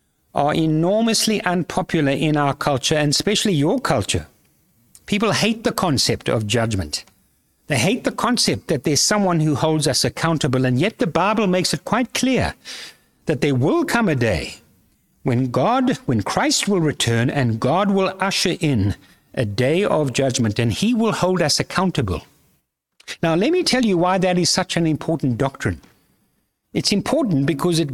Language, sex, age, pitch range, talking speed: English, male, 60-79, 135-190 Hz, 170 wpm